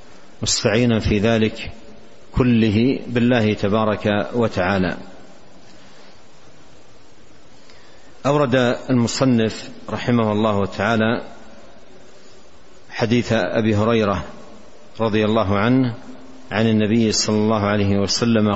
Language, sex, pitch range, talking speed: Arabic, male, 105-125 Hz, 80 wpm